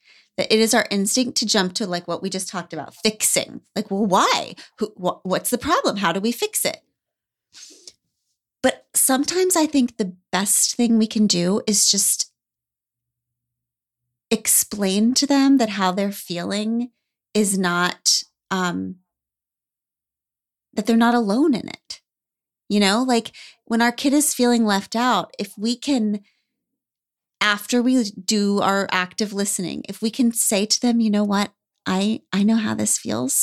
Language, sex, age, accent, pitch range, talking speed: English, female, 30-49, American, 185-235 Hz, 160 wpm